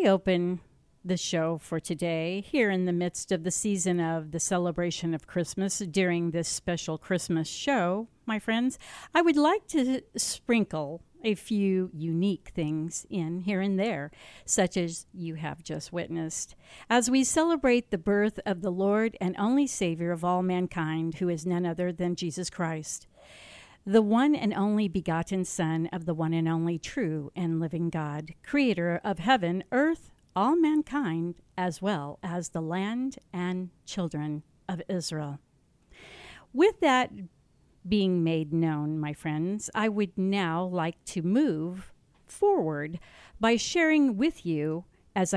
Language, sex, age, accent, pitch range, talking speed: English, female, 50-69, American, 165-210 Hz, 150 wpm